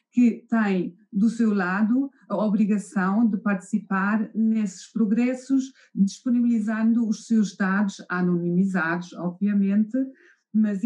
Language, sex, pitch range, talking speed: Portuguese, female, 195-235 Hz, 100 wpm